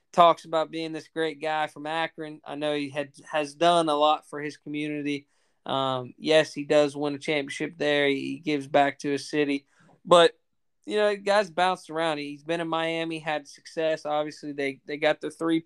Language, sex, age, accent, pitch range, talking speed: English, male, 20-39, American, 145-165 Hz, 200 wpm